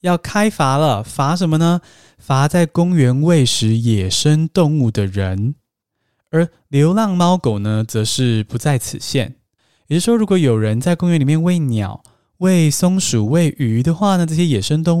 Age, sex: 20-39, male